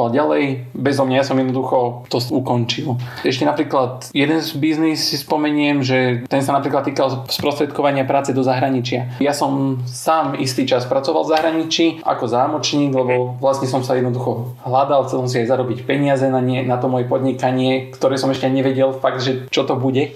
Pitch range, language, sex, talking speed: 125-140 Hz, Slovak, male, 175 wpm